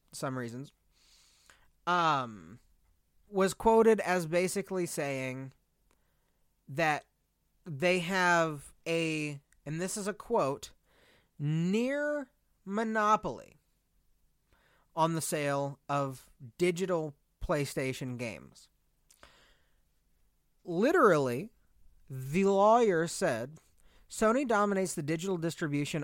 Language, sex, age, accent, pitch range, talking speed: English, male, 30-49, American, 120-180 Hz, 80 wpm